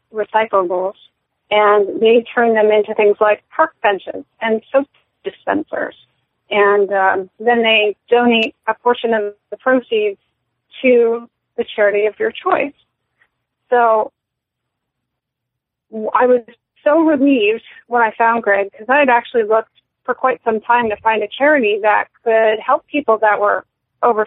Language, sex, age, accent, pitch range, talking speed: English, female, 30-49, American, 215-250 Hz, 145 wpm